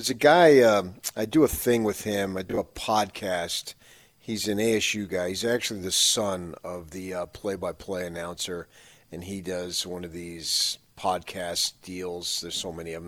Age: 40-59